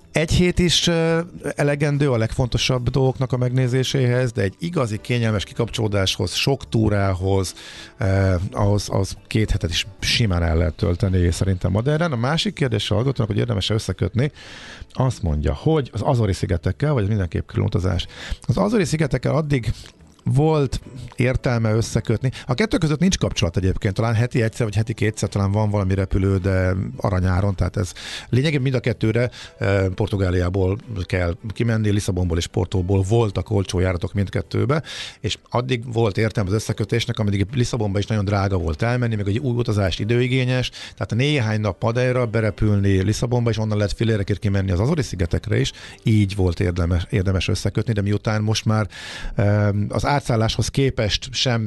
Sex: male